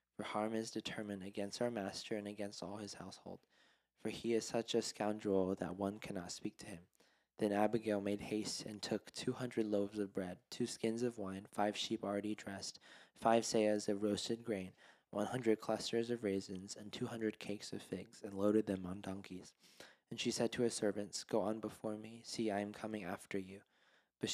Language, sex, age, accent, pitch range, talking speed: English, male, 20-39, American, 100-115 Hz, 195 wpm